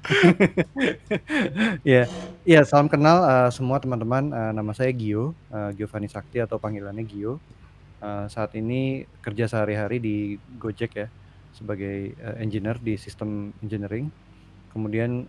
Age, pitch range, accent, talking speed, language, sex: 20-39, 105-120 Hz, native, 135 wpm, Indonesian, male